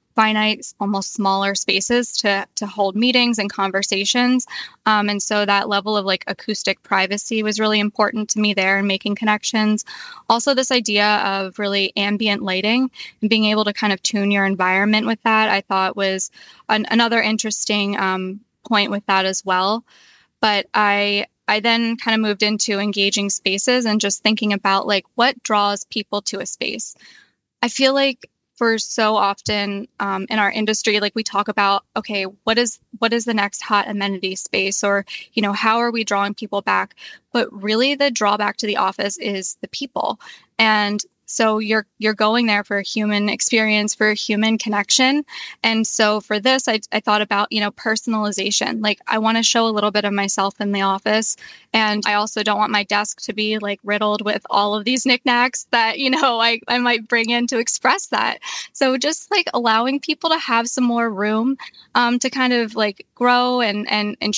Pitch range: 205-230 Hz